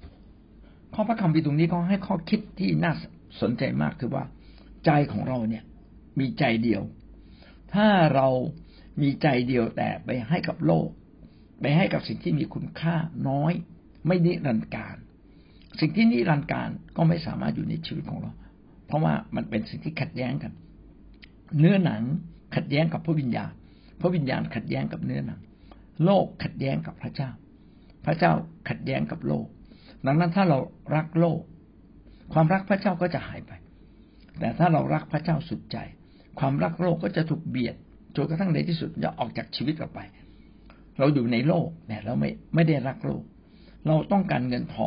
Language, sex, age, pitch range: Thai, male, 60-79, 125-175 Hz